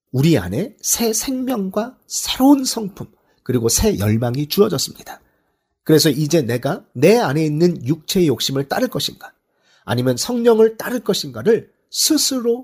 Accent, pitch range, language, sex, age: native, 130-210 Hz, Korean, male, 40-59